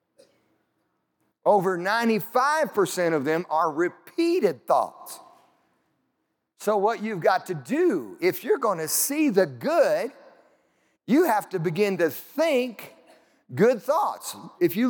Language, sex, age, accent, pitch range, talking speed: English, male, 50-69, American, 165-260 Hz, 120 wpm